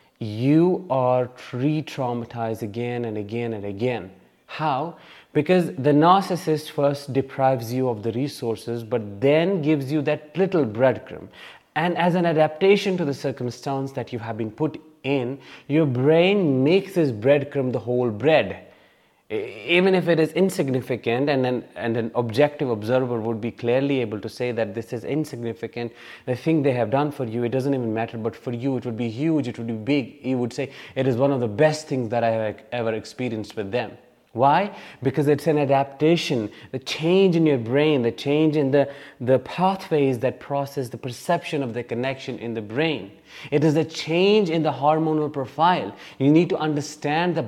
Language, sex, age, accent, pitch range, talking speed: English, male, 30-49, Indian, 120-155 Hz, 180 wpm